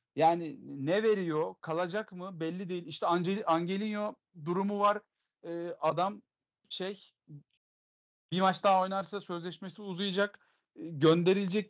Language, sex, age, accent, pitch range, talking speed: Turkish, male, 40-59, native, 155-200 Hz, 115 wpm